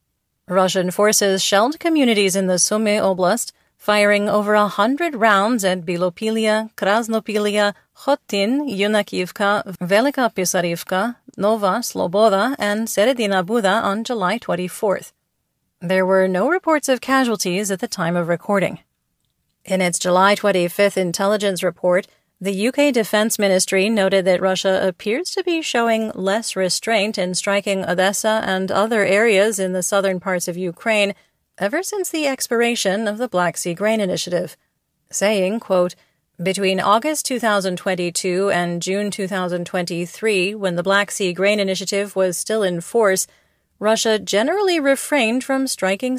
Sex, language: female, English